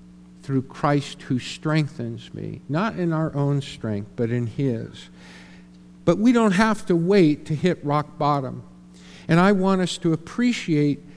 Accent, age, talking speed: American, 50-69, 155 wpm